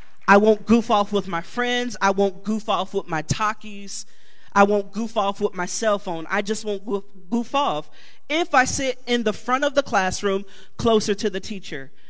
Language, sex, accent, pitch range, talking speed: English, male, American, 195-240 Hz, 200 wpm